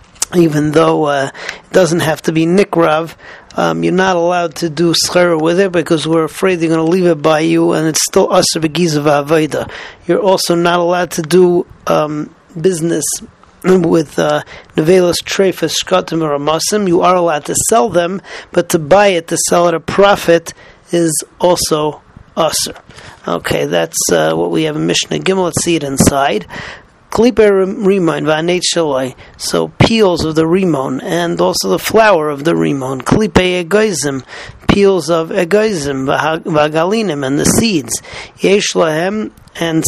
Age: 40-59